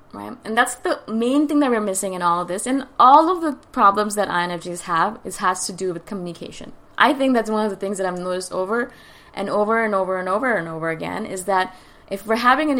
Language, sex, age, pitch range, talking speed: English, female, 20-39, 185-240 Hz, 260 wpm